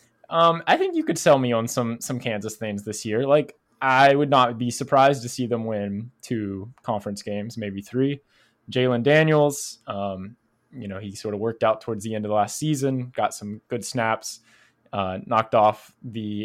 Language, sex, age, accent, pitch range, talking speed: English, male, 20-39, American, 105-130 Hz, 195 wpm